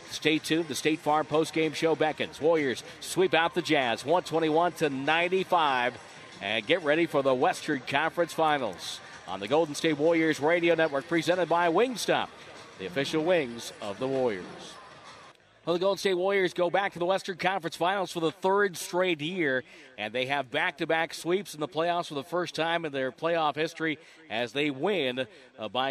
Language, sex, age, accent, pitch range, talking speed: English, male, 50-69, American, 140-175 Hz, 180 wpm